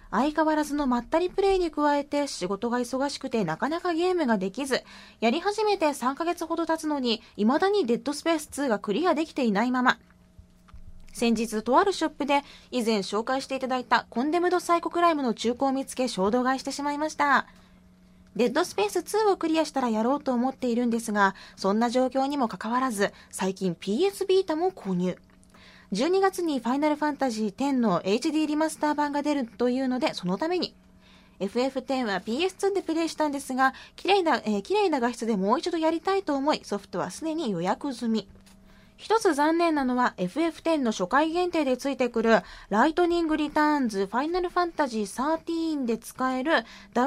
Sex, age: female, 20-39